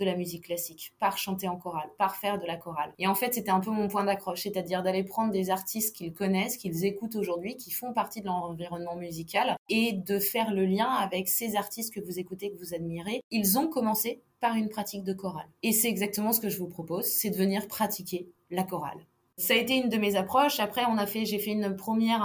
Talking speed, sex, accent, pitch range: 240 wpm, female, French, 185-220 Hz